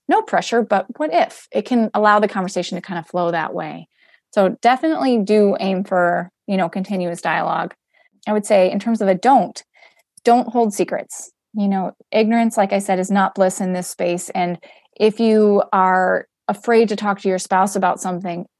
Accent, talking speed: American, 195 wpm